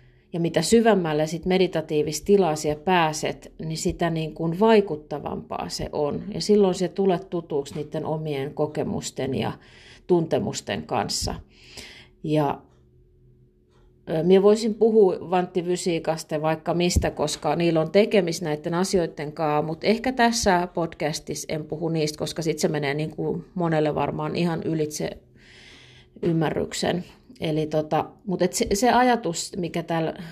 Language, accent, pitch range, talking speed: Finnish, native, 155-190 Hz, 120 wpm